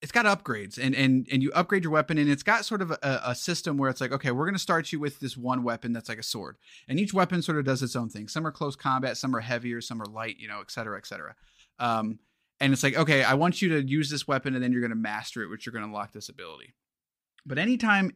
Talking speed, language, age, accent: 290 wpm, English, 30-49, American